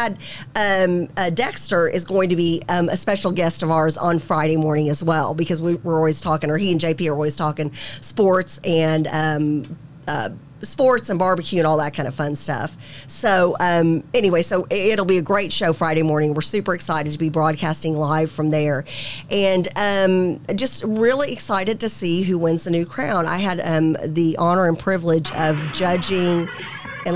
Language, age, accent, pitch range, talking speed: English, 40-59, American, 155-185 Hz, 190 wpm